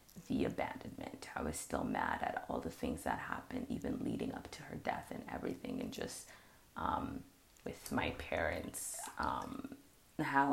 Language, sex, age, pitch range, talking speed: English, female, 20-39, 135-160 Hz, 160 wpm